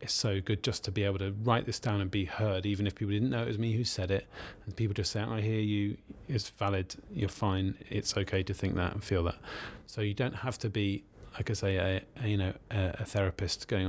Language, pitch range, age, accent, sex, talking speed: English, 100-110 Hz, 30-49, British, male, 270 wpm